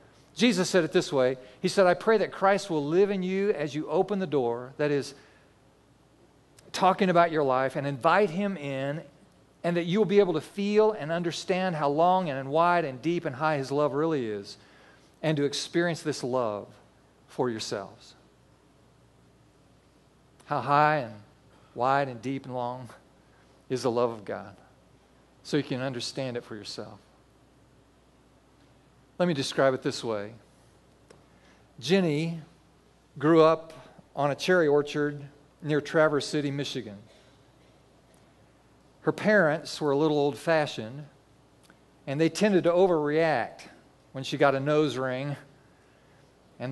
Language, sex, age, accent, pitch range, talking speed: English, male, 40-59, American, 135-165 Hz, 145 wpm